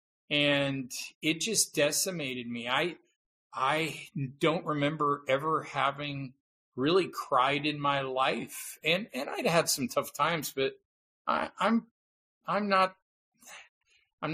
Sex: male